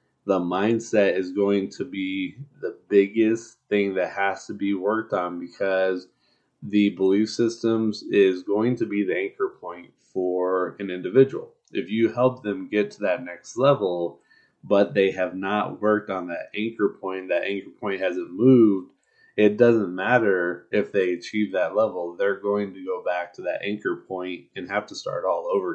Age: 20-39